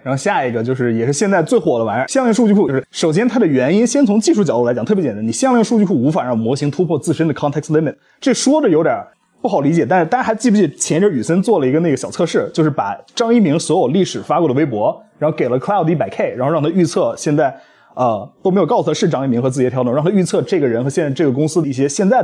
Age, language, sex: 30-49, Chinese, male